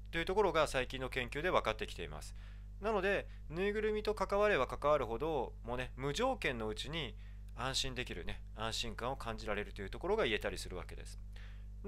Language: Japanese